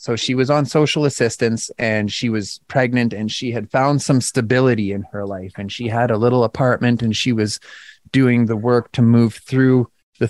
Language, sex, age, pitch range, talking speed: English, male, 30-49, 115-160 Hz, 205 wpm